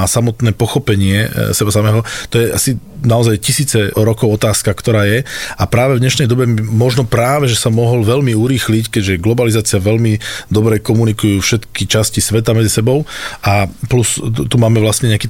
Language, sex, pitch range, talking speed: Slovak, male, 110-125 Hz, 165 wpm